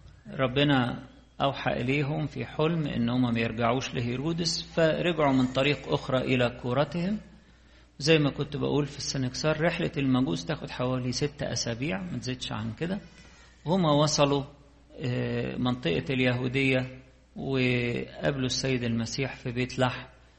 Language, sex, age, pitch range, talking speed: English, male, 50-69, 120-145 Hz, 120 wpm